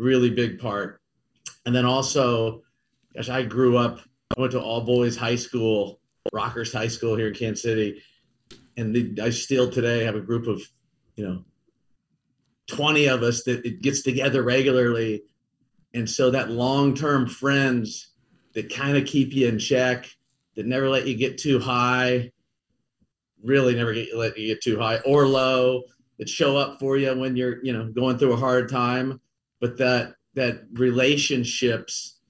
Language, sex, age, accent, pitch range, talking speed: English, male, 40-59, American, 115-130 Hz, 170 wpm